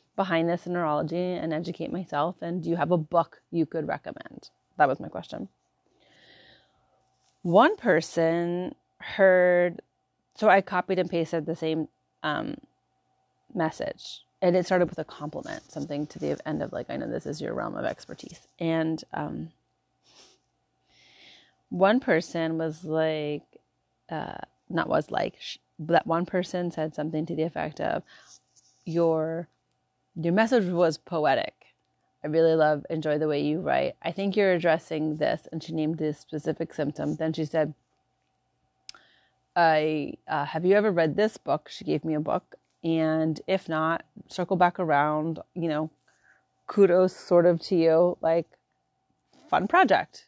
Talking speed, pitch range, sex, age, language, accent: 150 wpm, 155-175 Hz, female, 30-49, English, American